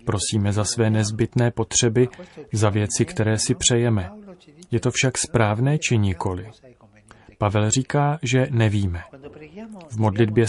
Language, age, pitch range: Czech, 30-49, 105-125 Hz